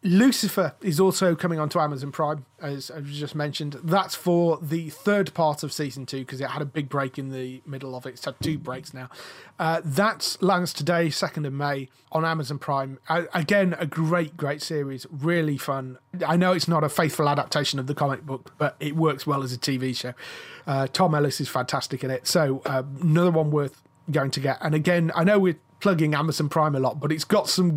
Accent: British